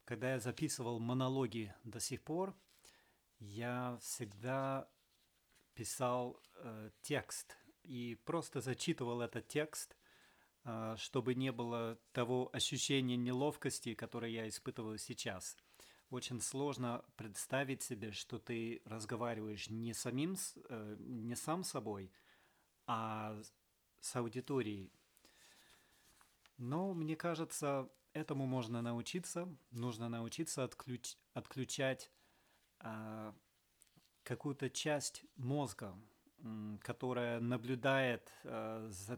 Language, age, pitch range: Russian, 30-49, 115-130 Hz